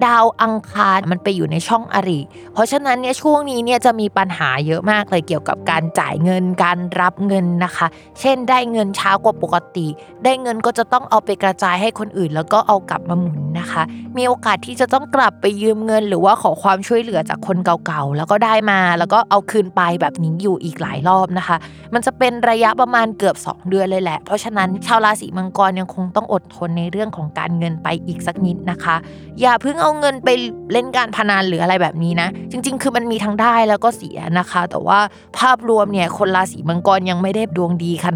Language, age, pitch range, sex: Thai, 20-39, 175-235 Hz, female